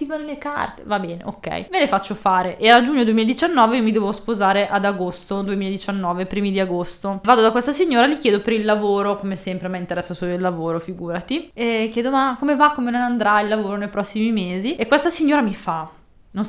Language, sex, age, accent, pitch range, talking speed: Italian, female, 20-39, native, 190-240 Hz, 215 wpm